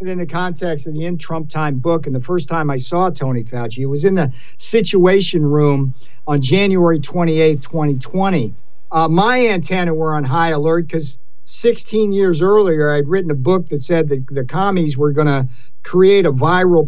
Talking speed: 190 wpm